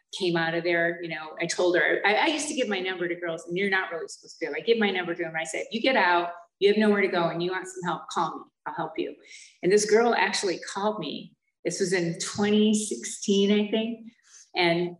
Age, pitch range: 30-49, 170-230 Hz